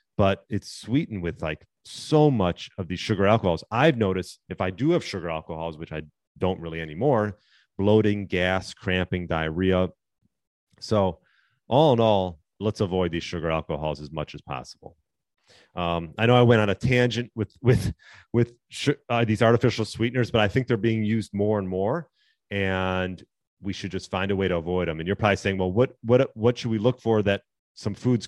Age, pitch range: 30-49, 90-115 Hz